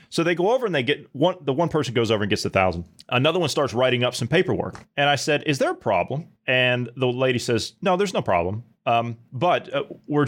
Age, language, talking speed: 30-49, English, 250 wpm